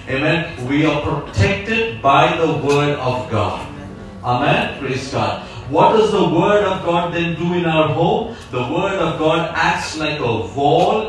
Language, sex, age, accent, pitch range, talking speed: English, male, 40-59, Indian, 145-200 Hz, 170 wpm